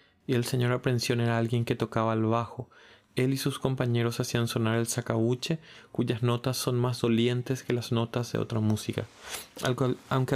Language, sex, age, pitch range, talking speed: Spanish, male, 30-49, 115-130 Hz, 185 wpm